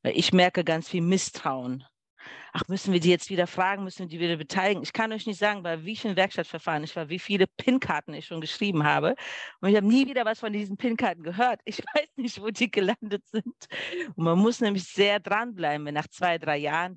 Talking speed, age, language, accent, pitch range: 225 wpm, 40-59, German, German, 165-210 Hz